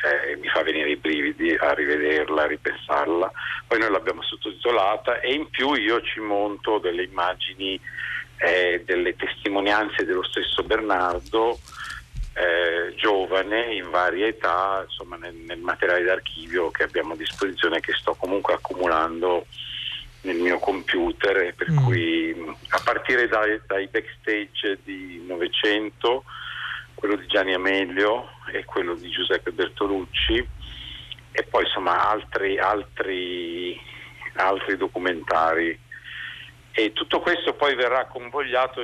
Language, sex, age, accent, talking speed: Italian, male, 50-69, native, 125 wpm